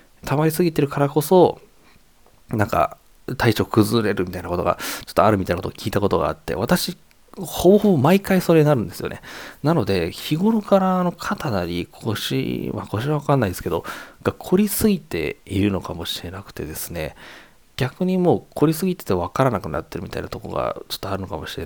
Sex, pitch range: male, 95-155 Hz